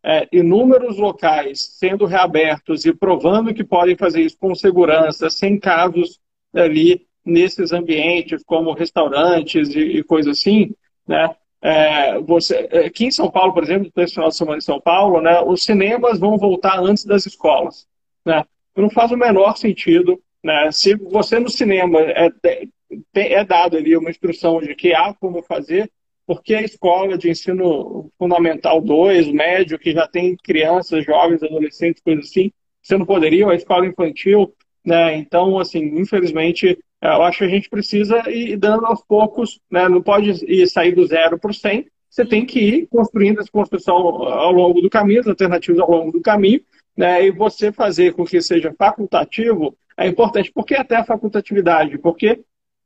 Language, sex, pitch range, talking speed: Portuguese, male, 170-215 Hz, 170 wpm